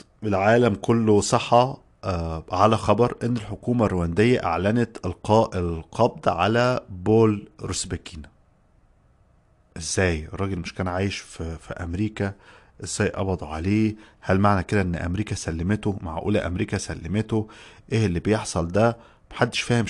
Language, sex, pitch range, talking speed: Arabic, male, 95-115 Hz, 120 wpm